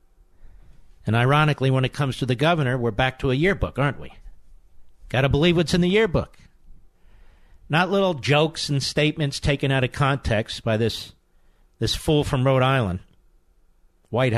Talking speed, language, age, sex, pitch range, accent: 165 wpm, English, 50-69, male, 90-150 Hz, American